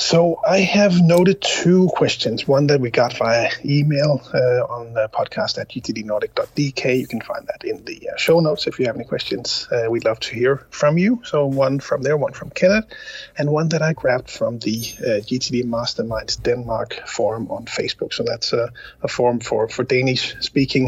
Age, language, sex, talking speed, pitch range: 30-49, English, male, 195 wpm, 130-185 Hz